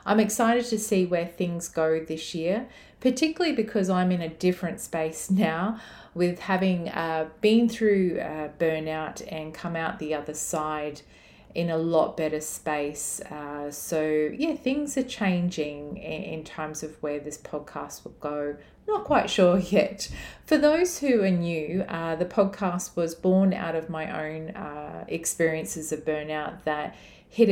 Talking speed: 160 wpm